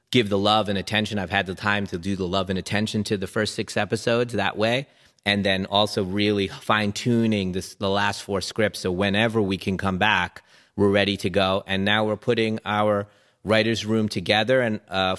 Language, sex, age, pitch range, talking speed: English, male, 30-49, 95-110 Hz, 210 wpm